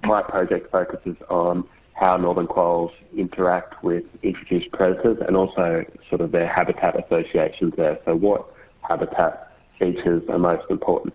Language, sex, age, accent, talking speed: English, male, 30-49, Australian, 140 wpm